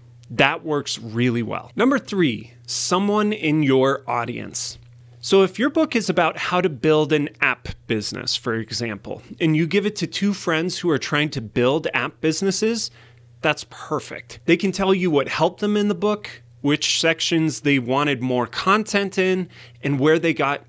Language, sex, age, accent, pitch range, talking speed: English, male, 30-49, American, 120-170 Hz, 175 wpm